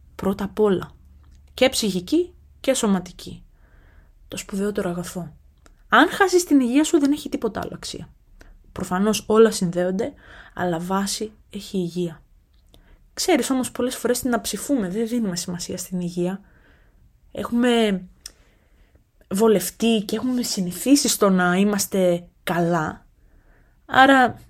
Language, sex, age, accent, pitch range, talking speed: Greek, female, 20-39, native, 175-240 Hz, 120 wpm